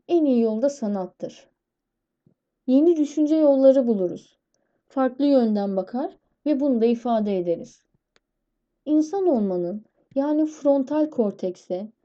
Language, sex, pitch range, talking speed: Turkish, female, 220-300 Hz, 105 wpm